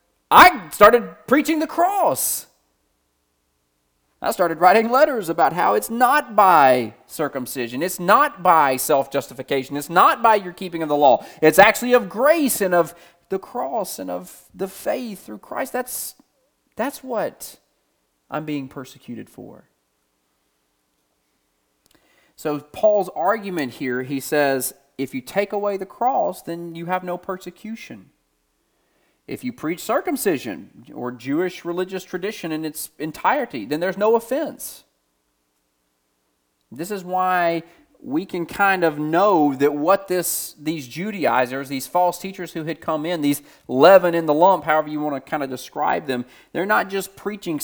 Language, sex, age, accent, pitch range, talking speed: English, male, 30-49, American, 135-195 Hz, 145 wpm